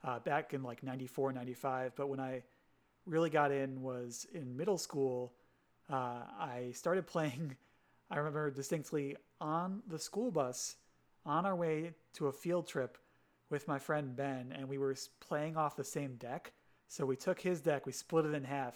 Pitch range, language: 130-155 Hz, English